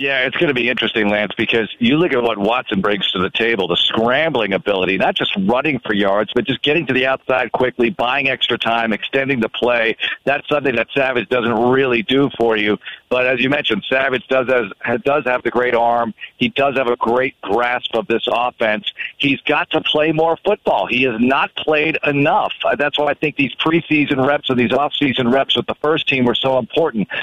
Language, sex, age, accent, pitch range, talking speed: English, male, 50-69, American, 120-145 Hz, 215 wpm